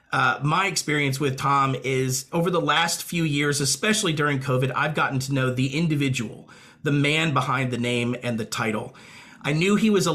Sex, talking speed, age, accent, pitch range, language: male, 190 wpm, 40-59, American, 130-160 Hz, English